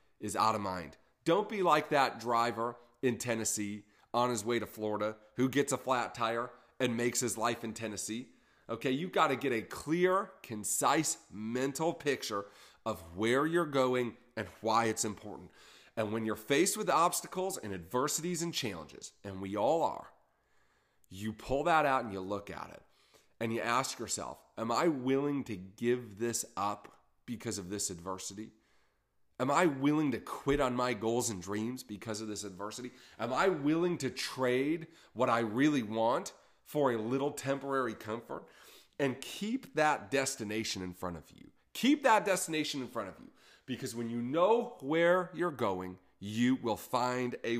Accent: American